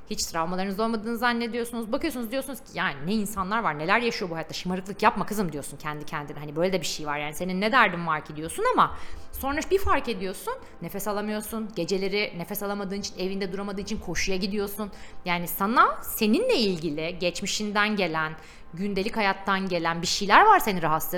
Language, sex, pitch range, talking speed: Turkish, female, 165-235 Hz, 180 wpm